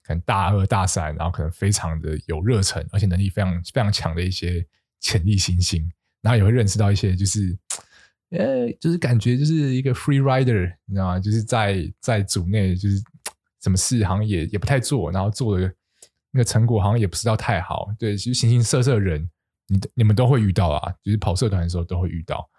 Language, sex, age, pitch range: Chinese, male, 20-39, 90-115 Hz